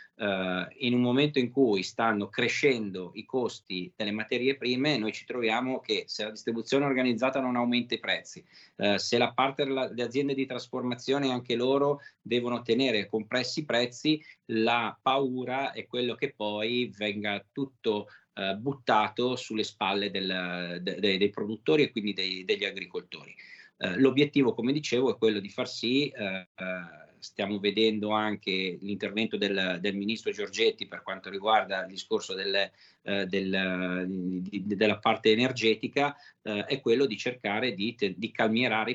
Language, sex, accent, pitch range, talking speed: Italian, male, native, 100-130 Hz, 140 wpm